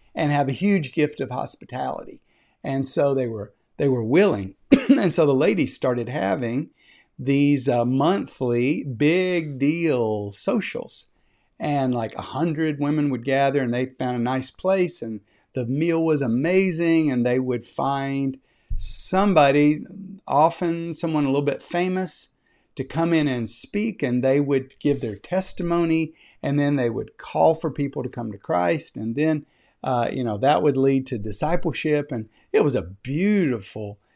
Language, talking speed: English, 160 wpm